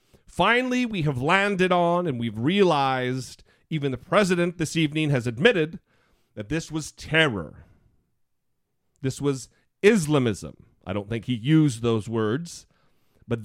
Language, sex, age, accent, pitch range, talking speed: English, male, 40-59, American, 125-190 Hz, 135 wpm